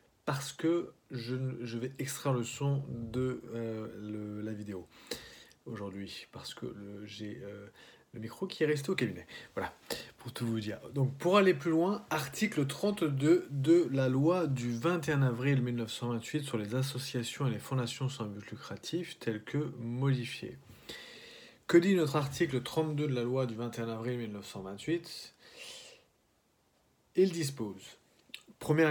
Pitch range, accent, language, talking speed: 120-160 Hz, French, English, 150 wpm